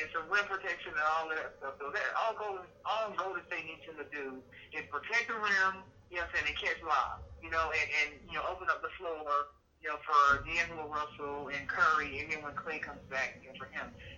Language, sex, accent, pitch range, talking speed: English, male, American, 155-195 Hz, 240 wpm